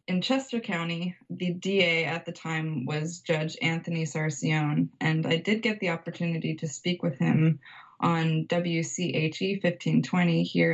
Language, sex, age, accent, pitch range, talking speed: English, female, 20-39, American, 165-205 Hz, 150 wpm